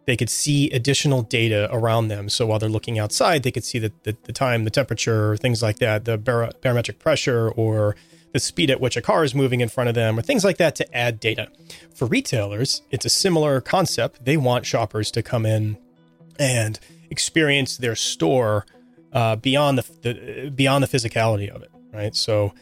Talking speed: 200 wpm